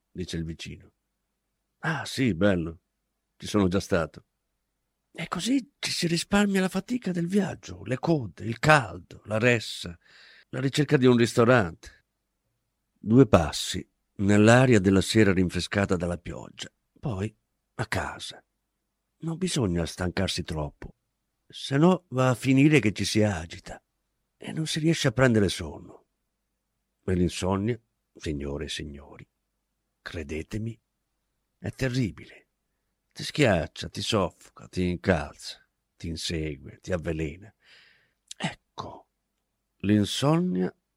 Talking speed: 115 wpm